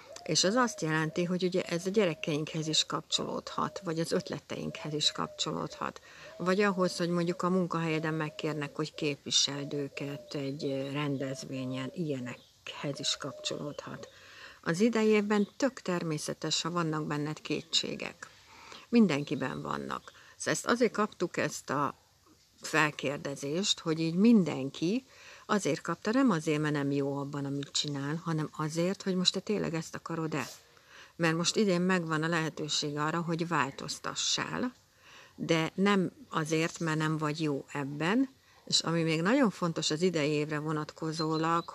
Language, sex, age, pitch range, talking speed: Hungarian, female, 60-79, 150-180 Hz, 135 wpm